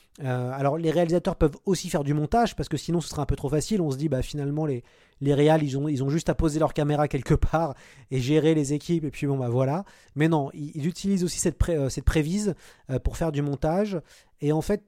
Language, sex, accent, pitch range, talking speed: French, male, French, 140-175 Hz, 260 wpm